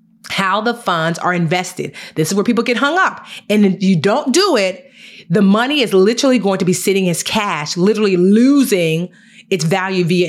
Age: 30-49